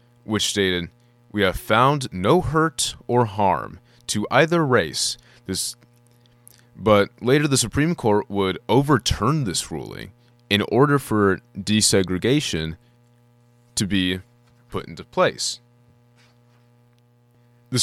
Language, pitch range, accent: English, 100-120 Hz, American